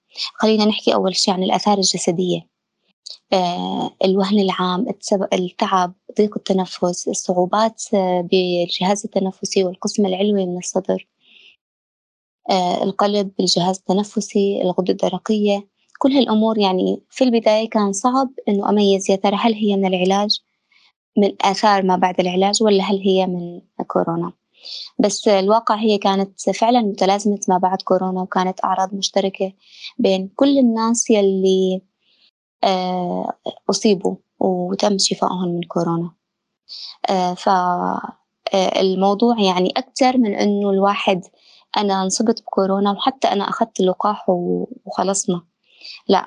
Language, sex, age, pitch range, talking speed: Arabic, female, 20-39, 185-210 Hz, 110 wpm